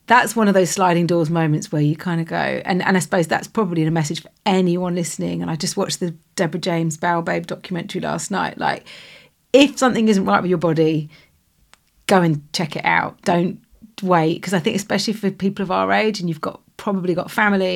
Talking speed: 220 wpm